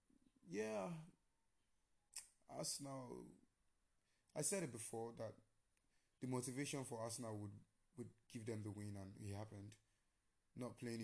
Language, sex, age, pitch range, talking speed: English, male, 20-39, 105-120 Hz, 120 wpm